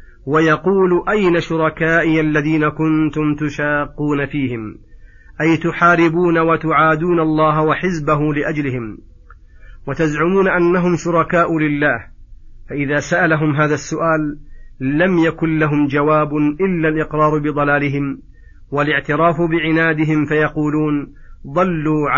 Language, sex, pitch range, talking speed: Arabic, male, 145-165 Hz, 85 wpm